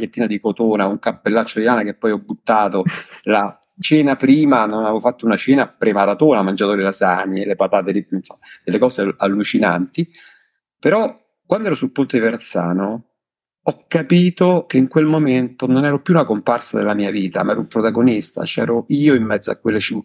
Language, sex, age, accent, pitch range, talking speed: Italian, male, 50-69, native, 100-150 Hz, 175 wpm